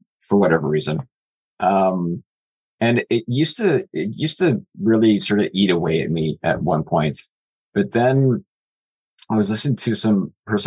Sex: male